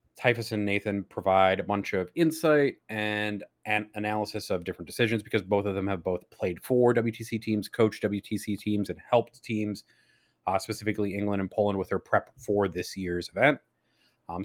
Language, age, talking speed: English, 30-49, 180 wpm